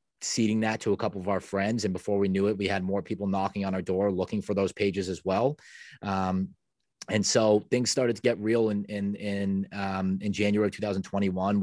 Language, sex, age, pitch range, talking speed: English, male, 20-39, 95-105 Hz, 215 wpm